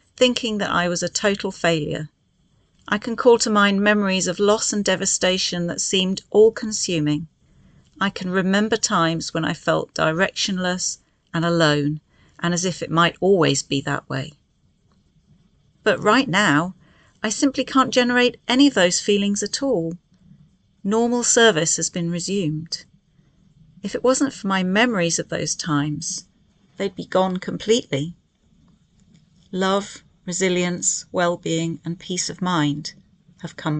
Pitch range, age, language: 165-210 Hz, 40-59, English